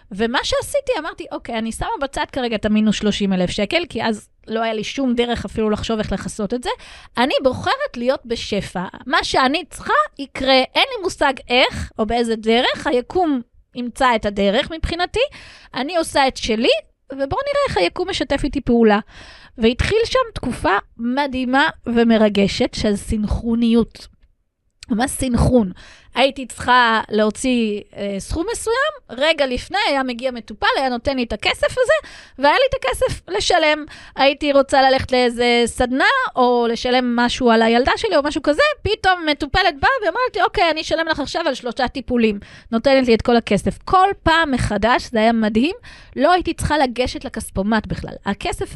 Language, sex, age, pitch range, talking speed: Hebrew, female, 20-39, 225-300 Hz, 160 wpm